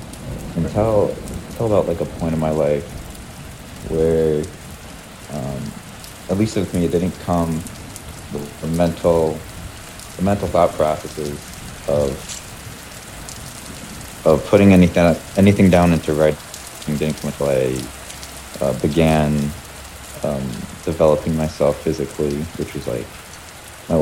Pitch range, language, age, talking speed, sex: 75-90 Hz, English, 40-59, 120 wpm, male